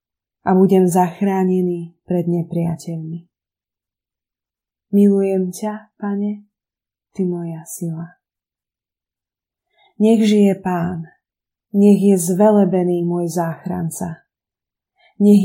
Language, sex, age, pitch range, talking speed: Slovak, female, 20-39, 175-205 Hz, 80 wpm